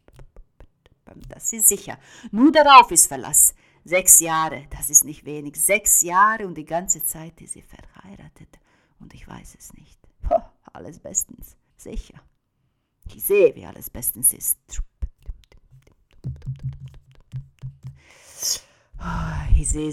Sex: female